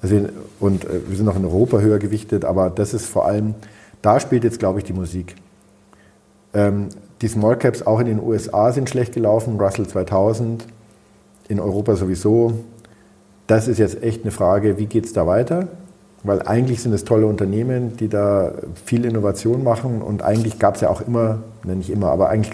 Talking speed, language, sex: 190 wpm, German, male